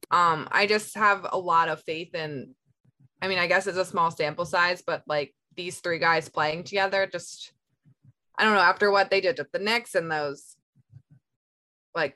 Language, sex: English, female